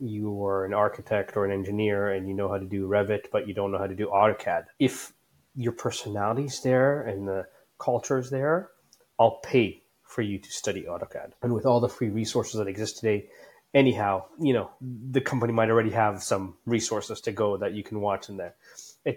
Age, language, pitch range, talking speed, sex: 30-49, English, 105-125 Hz, 205 wpm, male